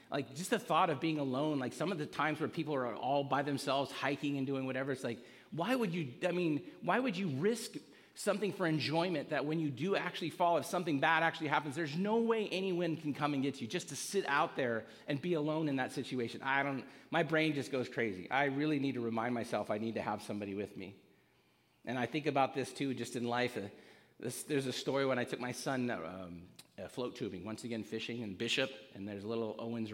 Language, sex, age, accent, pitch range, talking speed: English, male, 40-59, American, 115-150 Hz, 240 wpm